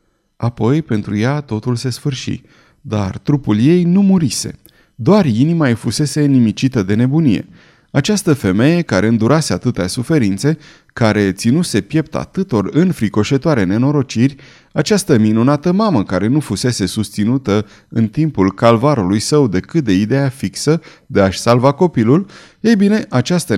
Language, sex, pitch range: Romanian, male, 110-150 Hz